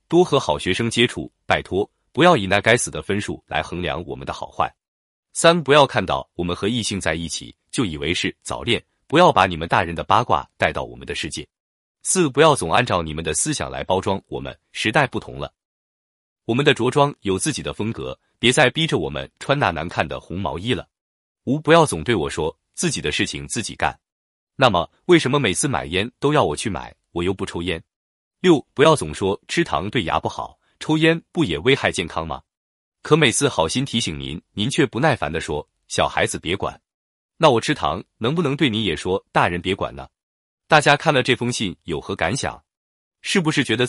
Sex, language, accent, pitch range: male, Chinese, native, 90-150 Hz